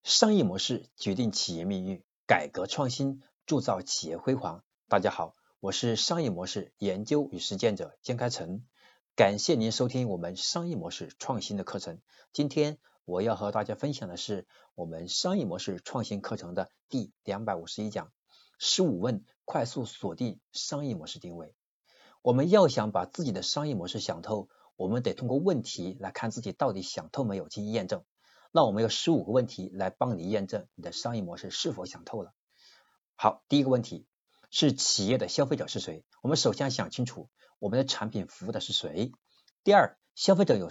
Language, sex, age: Chinese, male, 60-79